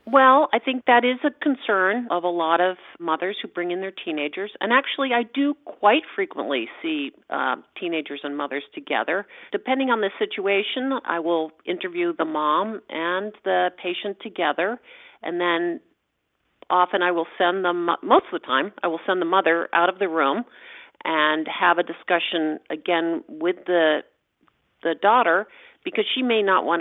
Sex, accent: female, American